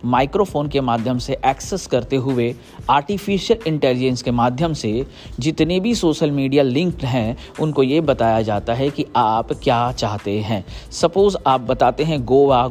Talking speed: 155 wpm